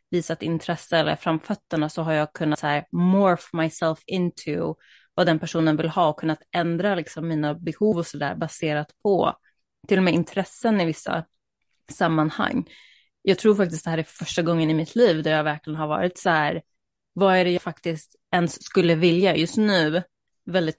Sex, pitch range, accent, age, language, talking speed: female, 165-195 Hz, native, 20-39, Swedish, 190 wpm